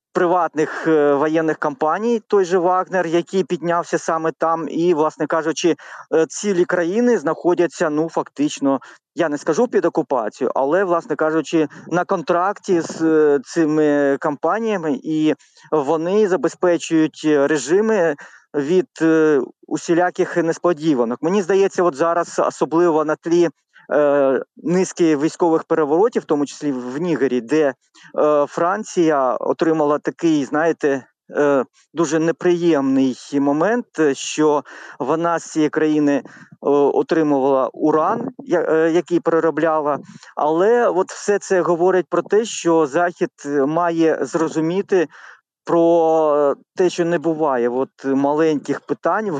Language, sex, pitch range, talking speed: Ukrainian, male, 155-180 Hz, 110 wpm